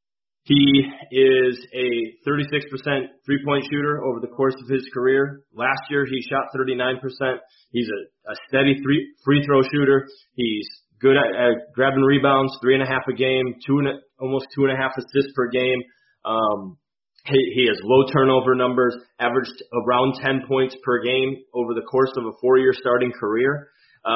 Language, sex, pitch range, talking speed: English, male, 125-140 Hz, 160 wpm